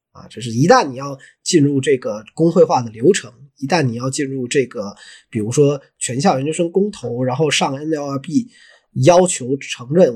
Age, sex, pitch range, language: 20-39, male, 125-155 Hz, Chinese